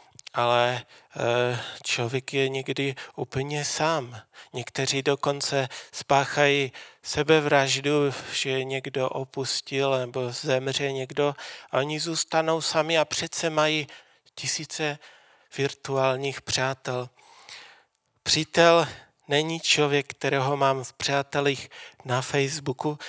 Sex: male